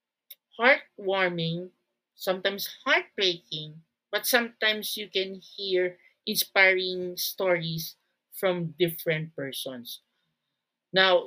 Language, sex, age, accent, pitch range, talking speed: Filipino, male, 40-59, native, 165-200 Hz, 75 wpm